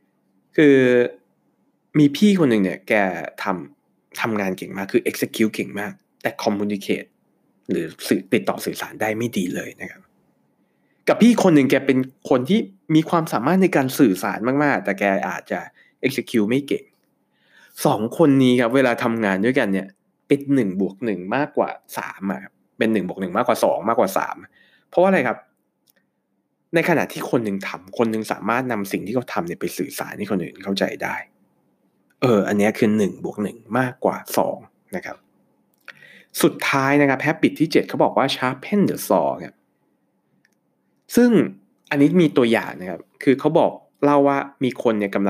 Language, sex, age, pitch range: Thai, male, 20-39, 100-145 Hz